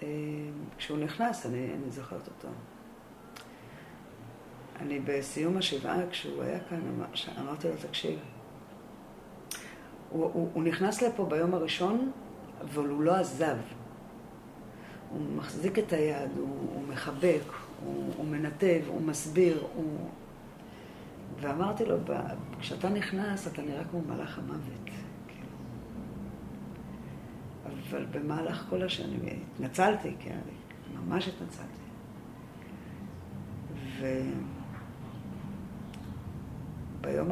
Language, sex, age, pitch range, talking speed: Hebrew, female, 50-69, 145-180 Hz, 95 wpm